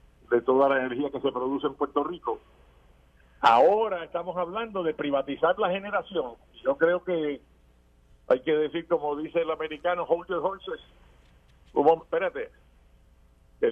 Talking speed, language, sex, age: 125 wpm, Spanish, male, 50-69